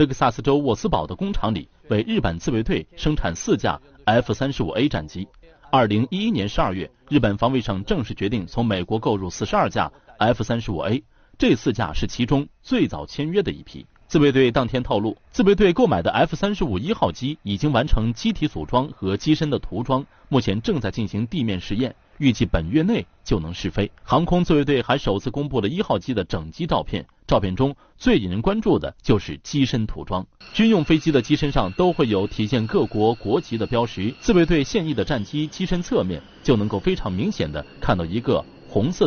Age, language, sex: 30-49, Chinese, male